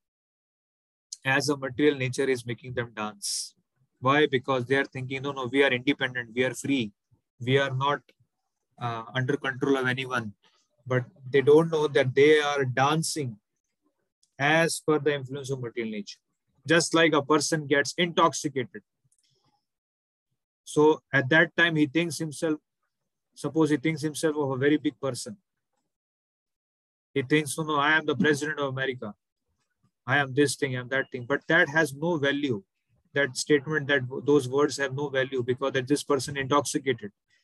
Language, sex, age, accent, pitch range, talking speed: English, male, 30-49, Indian, 125-150 Hz, 165 wpm